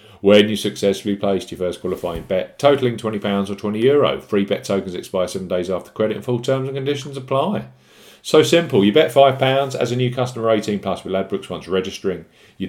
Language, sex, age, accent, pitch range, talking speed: English, male, 50-69, British, 90-125 Hz, 195 wpm